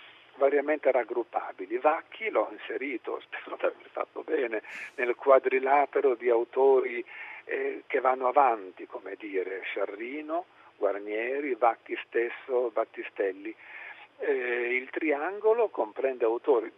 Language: Italian